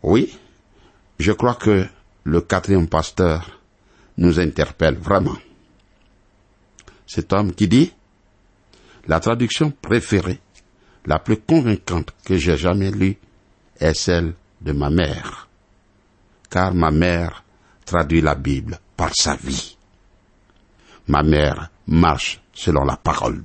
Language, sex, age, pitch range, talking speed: French, male, 60-79, 90-110 Hz, 115 wpm